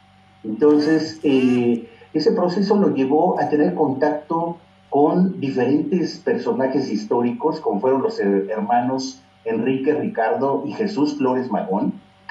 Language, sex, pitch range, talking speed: Spanish, male, 100-155 Hz, 110 wpm